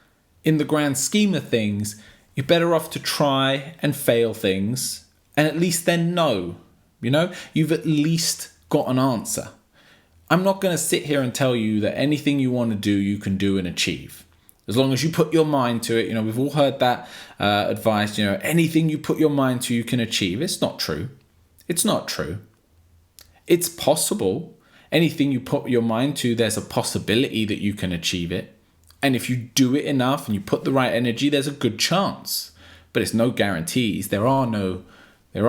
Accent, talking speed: British, 205 wpm